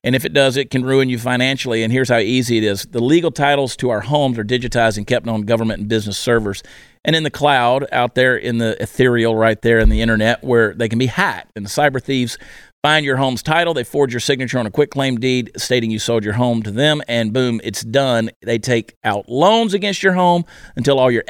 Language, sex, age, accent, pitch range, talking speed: English, male, 40-59, American, 110-140 Hz, 245 wpm